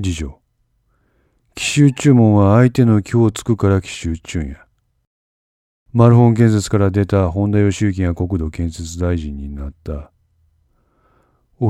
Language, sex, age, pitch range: Japanese, male, 40-59, 85-115 Hz